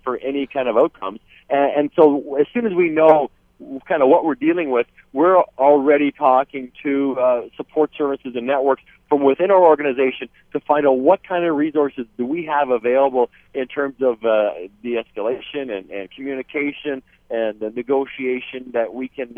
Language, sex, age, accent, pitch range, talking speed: English, male, 40-59, American, 125-145 Hz, 170 wpm